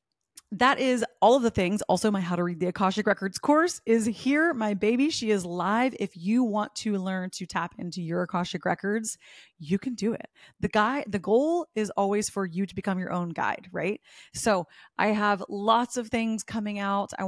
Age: 30-49